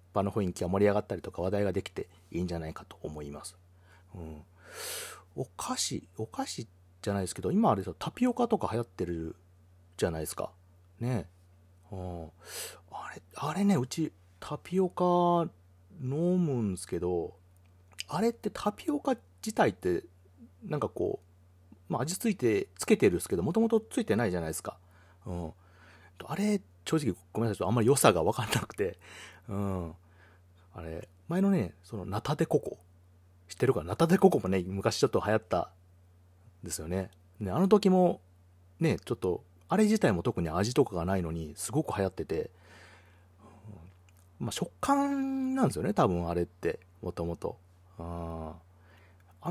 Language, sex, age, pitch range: Japanese, male, 40-59, 90-135 Hz